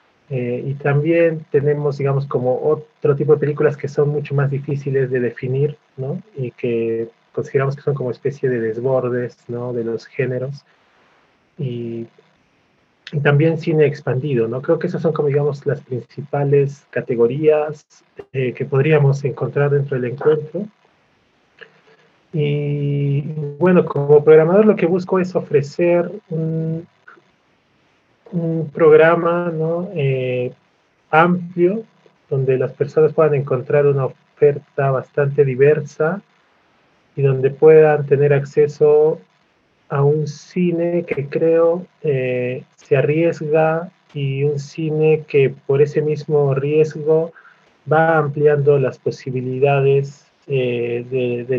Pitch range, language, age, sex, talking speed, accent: 135-160 Hz, Spanish, 30-49, male, 120 wpm, Argentinian